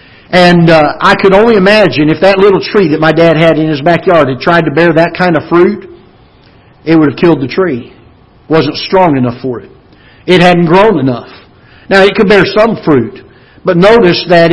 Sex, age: male, 50-69